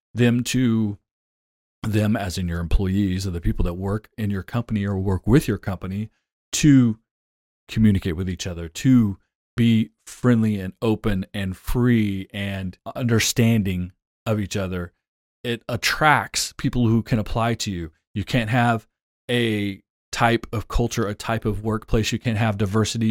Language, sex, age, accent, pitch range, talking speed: English, male, 30-49, American, 100-125 Hz, 155 wpm